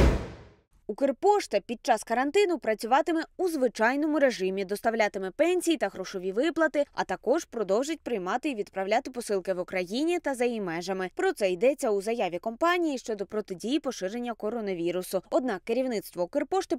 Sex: female